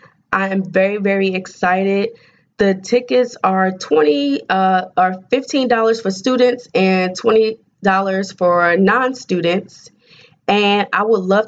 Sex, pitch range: female, 180-205 Hz